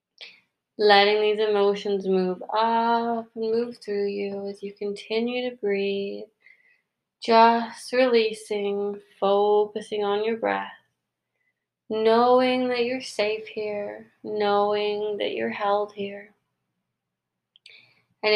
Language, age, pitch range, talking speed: English, 20-39, 190-225 Hz, 100 wpm